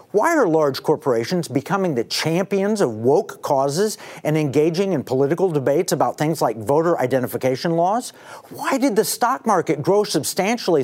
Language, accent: English, American